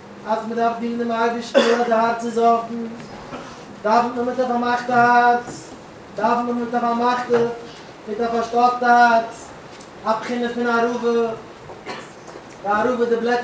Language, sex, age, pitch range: English, male, 30-49, 235-255 Hz